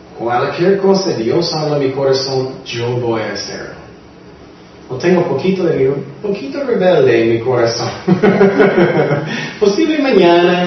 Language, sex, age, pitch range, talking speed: Spanish, male, 30-49, 125-175 Hz, 135 wpm